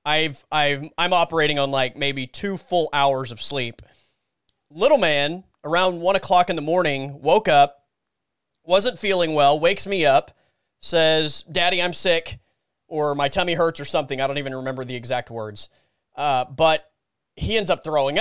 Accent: American